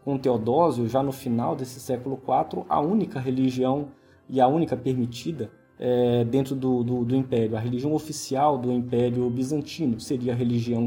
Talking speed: 165 wpm